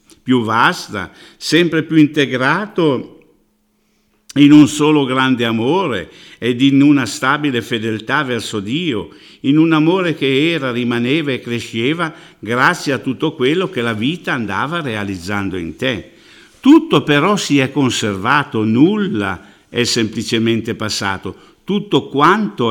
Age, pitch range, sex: 50-69, 115-150 Hz, male